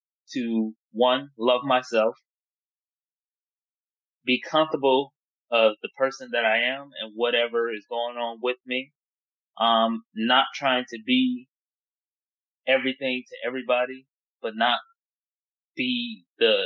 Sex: male